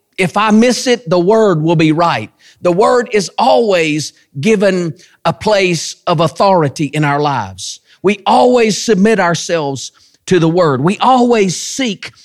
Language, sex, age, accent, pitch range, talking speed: English, male, 40-59, American, 115-185 Hz, 150 wpm